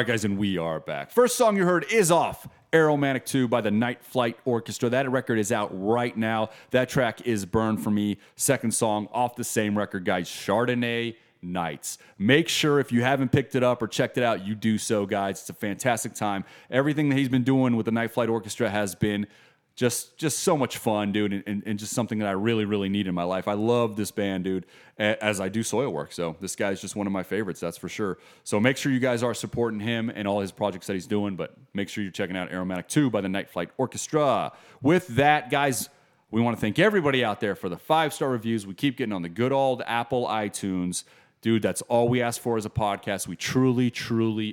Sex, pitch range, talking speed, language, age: male, 100-125 Hz, 235 wpm, English, 30-49